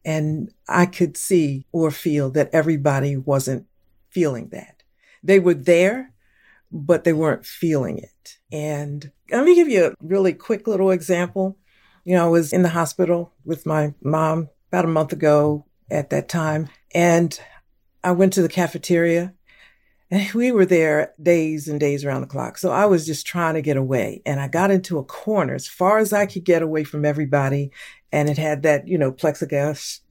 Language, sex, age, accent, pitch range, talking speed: English, female, 50-69, American, 150-195 Hz, 185 wpm